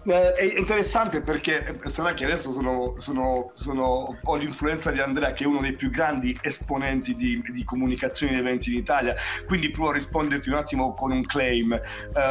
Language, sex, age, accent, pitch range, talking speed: Italian, male, 40-59, native, 135-165 Hz, 190 wpm